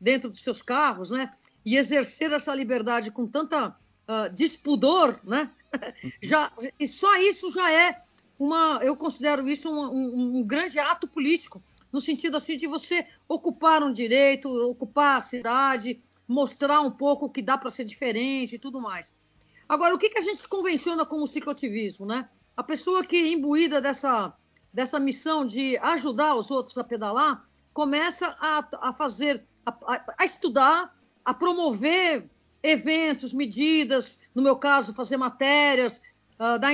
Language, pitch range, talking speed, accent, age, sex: Portuguese, 250-320 Hz, 155 wpm, Brazilian, 50-69, female